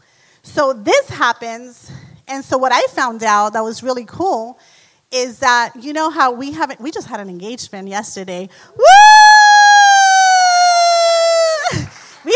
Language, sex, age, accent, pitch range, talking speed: English, female, 30-49, American, 250-330 Hz, 135 wpm